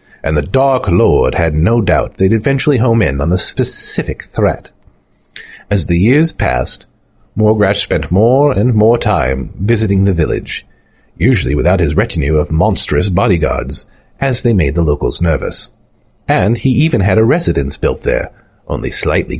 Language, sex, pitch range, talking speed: English, male, 85-130 Hz, 160 wpm